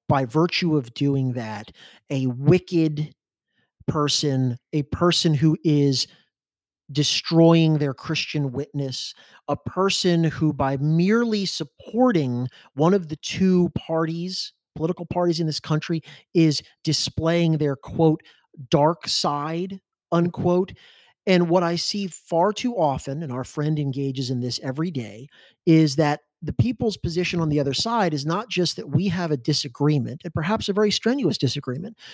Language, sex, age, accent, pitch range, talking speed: English, male, 30-49, American, 145-180 Hz, 145 wpm